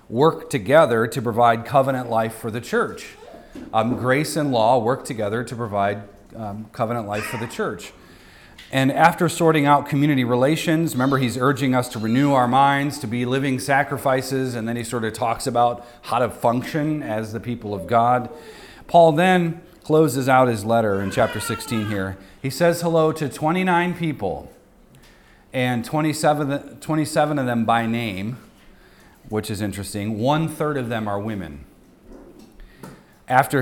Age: 40-59